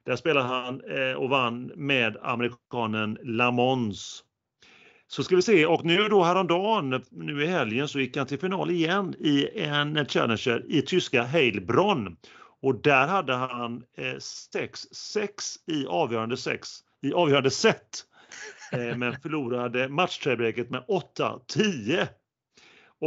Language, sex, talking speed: Swedish, male, 120 wpm